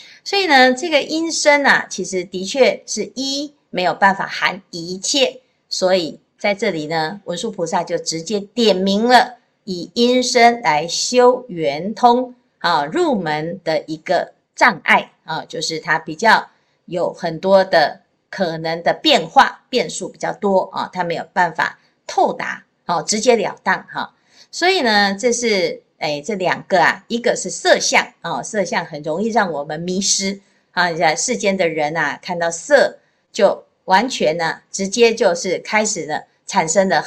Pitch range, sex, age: 170-245 Hz, female, 50-69